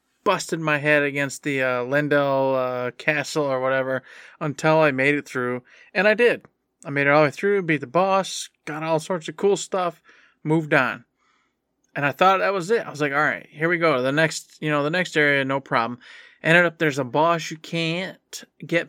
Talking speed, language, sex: 215 wpm, English, male